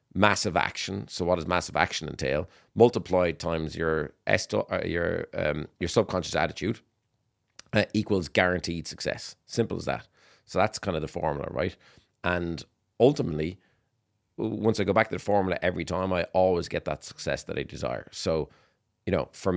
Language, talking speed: English, 170 wpm